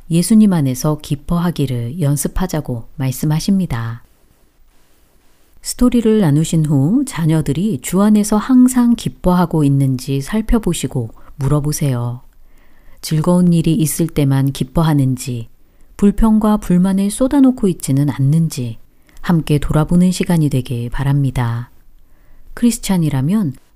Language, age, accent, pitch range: Korean, 40-59, native, 135-195 Hz